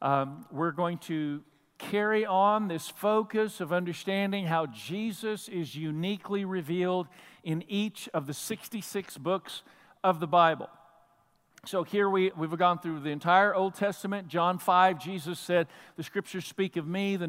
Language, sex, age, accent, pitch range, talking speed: English, male, 50-69, American, 165-205 Hz, 150 wpm